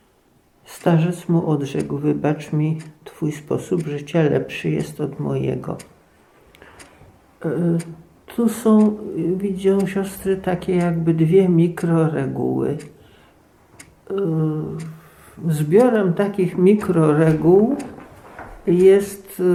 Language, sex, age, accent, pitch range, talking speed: Polish, male, 50-69, native, 160-205 Hz, 80 wpm